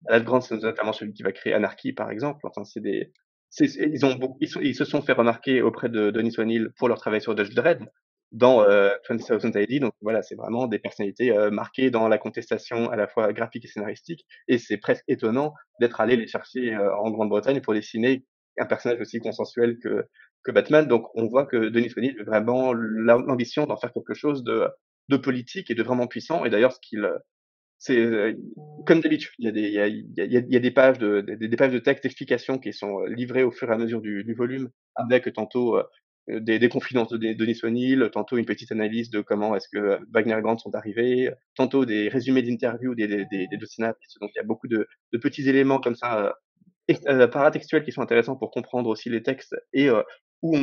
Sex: male